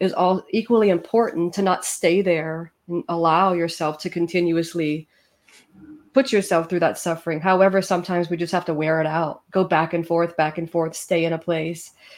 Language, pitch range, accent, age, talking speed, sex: English, 170-200 Hz, American, 30-49, 185 wpm, female